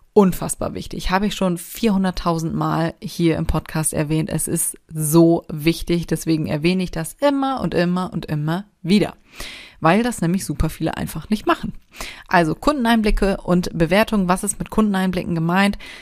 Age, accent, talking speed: 30-49, German, 155 wpm